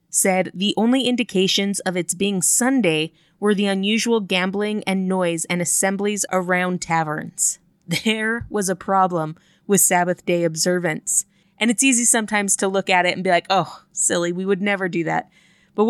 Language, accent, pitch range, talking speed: English, American, 170-200 Hz, 170 wpm